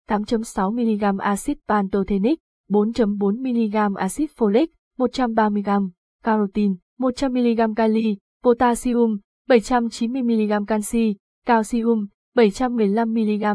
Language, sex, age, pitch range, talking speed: Vietnamese, female, 20-39, 205-245 Hz, 65 wpm